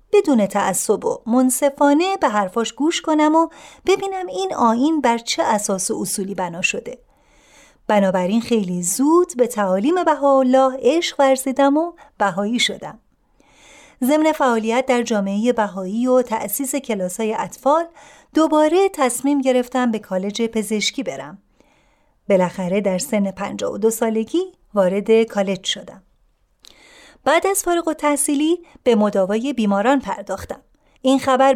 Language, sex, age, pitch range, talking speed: Persian, female, 30-49, 205-285 Hz, 125 wpm